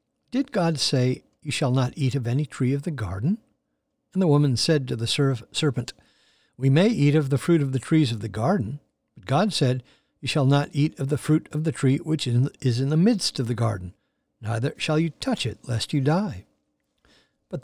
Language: English